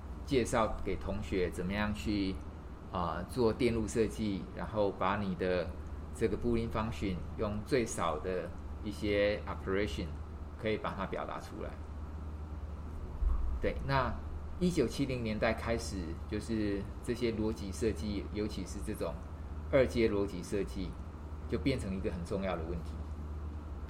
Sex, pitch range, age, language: male, 75-100 Hz, 20-39, Chinese